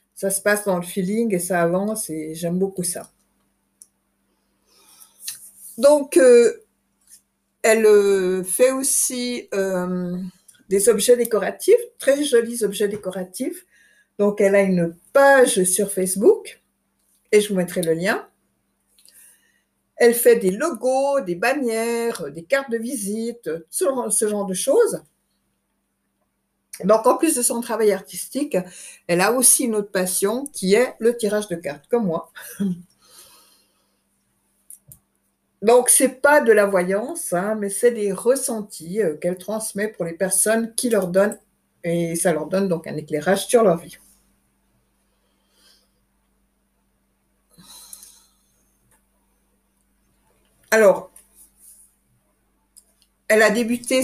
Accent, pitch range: French, 185-245 Hz